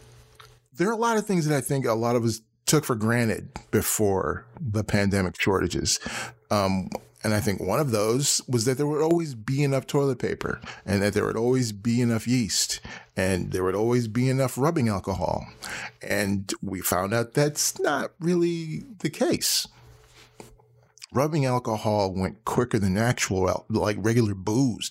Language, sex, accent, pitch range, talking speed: English, male, American, 100-130 Hz, 170 wpm